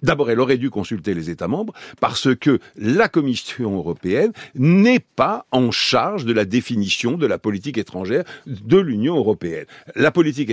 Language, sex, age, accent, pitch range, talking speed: French, male, 60-79, French, 120-185 Hz, 165 wpm